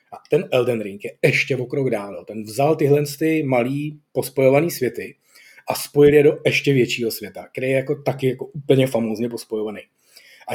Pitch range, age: 120-150 Hz, 30-49